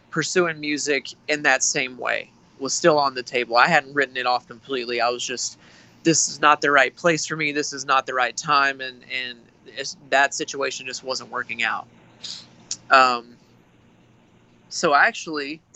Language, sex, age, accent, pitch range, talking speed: English, male, 20-39, American, 125-145 Hz, 170 wpm